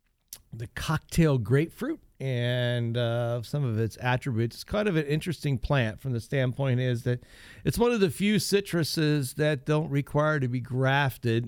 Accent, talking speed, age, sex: American, 165 wpm, 50-69, male